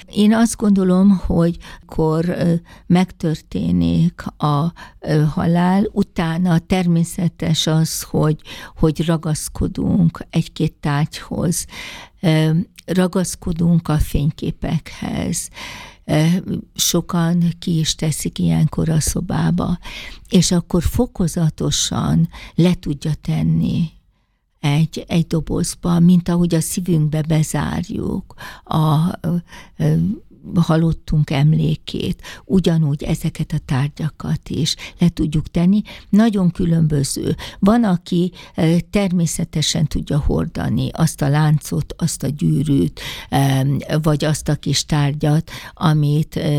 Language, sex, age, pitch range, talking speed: Hungarian, female, 60-79, 150-175 Hz, 95 wpm